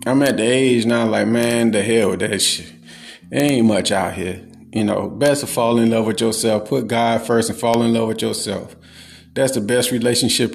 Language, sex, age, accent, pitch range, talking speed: English, male, 30-49, American, 110-130 Hz, 215 wpm